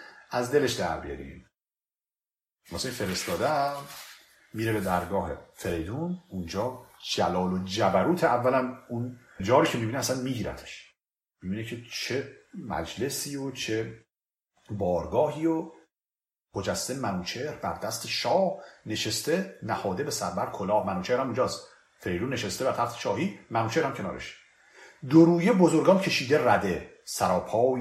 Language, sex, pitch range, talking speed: Persian, male, 110-175 Hz, 120 wpm